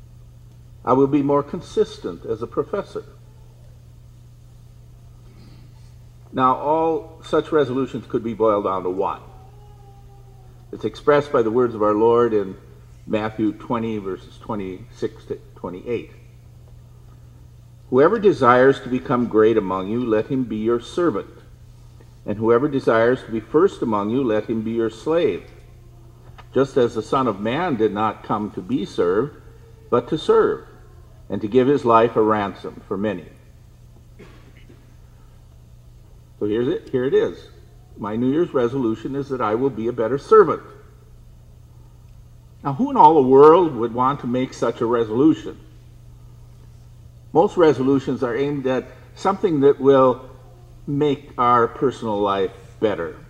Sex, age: male, 50-69